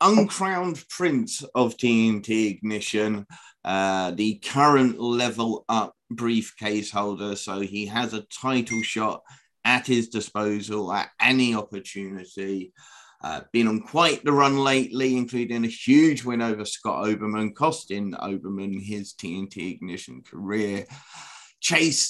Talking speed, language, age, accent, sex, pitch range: 120 wpm, English, 30-49, British, male, 100-120 Hz